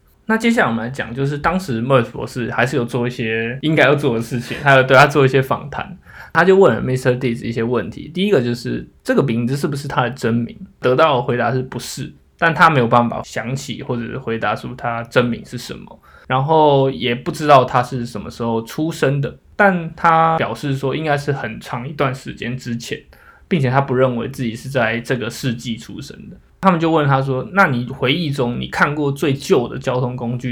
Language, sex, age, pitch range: Chinese, male, 20-39, 120-145 Hz